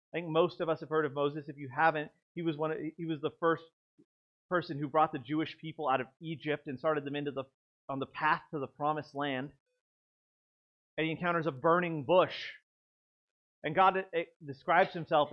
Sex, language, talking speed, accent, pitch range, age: male, English, 210 wpm, American, 140-170 Hz, 30-49